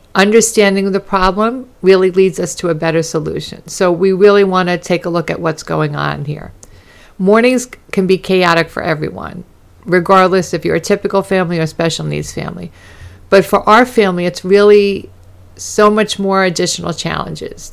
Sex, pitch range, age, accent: female, 165-205 Hz, 50-69, American